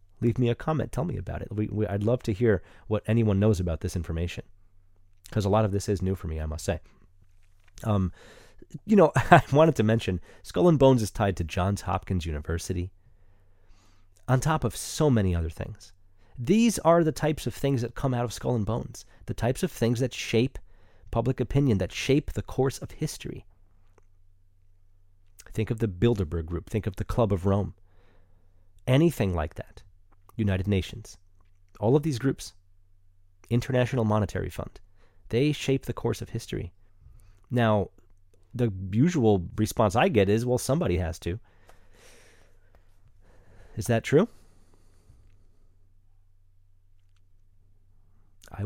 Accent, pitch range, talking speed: American, 95-120 Hz, 155 wpm